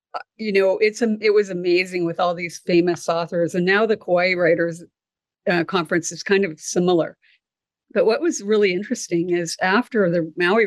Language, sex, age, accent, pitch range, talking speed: English, female, 50-69, American, 185-220 Hz, 180 wpm